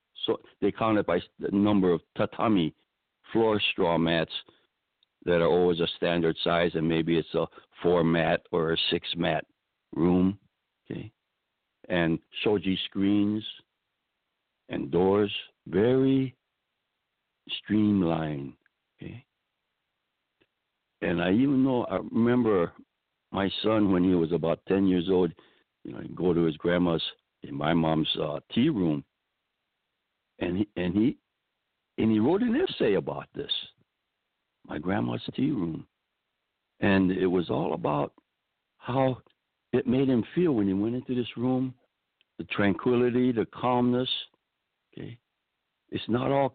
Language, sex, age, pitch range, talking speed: English, male, 60-79, 85-125 Hz, 135 wpm